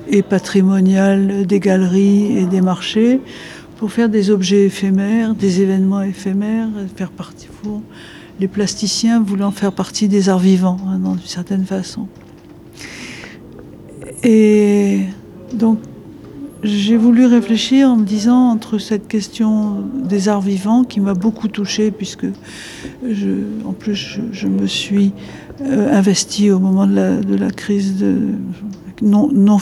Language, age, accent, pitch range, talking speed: French, 60-79, French, 195-220 Hz, 140 wpm